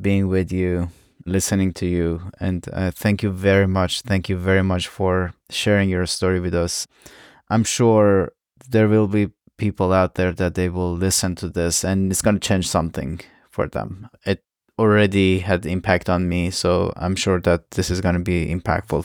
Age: 20-39